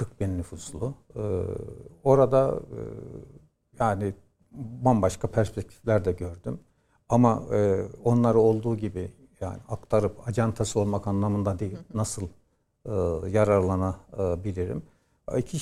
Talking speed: 75 wpm